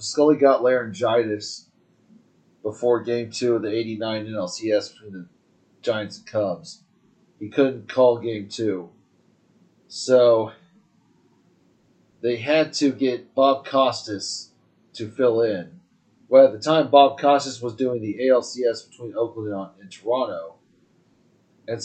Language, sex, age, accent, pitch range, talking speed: English, male, 30-49, American, 110-135 Hz, 125 wpm